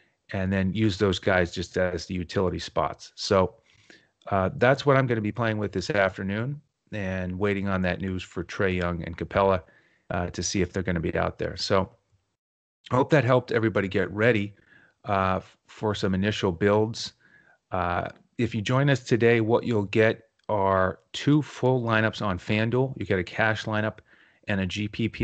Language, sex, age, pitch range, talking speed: English, male, 30-49, 95-110 Hz, 185 wpm